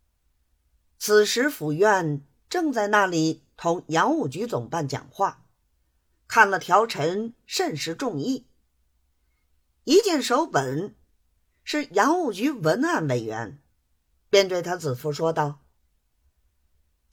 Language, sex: Chinese, female